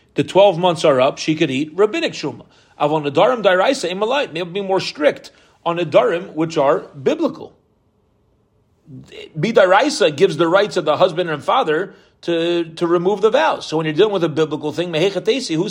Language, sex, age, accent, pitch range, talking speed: English, male, 40-59, American, 150-185 Hz, 180 wpm